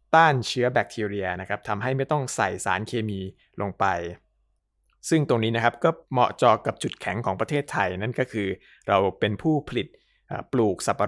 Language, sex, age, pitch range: Thai, male, 20-39, 100-125 Hz